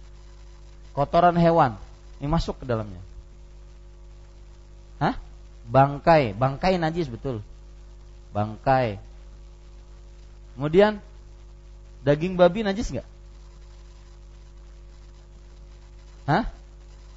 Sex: male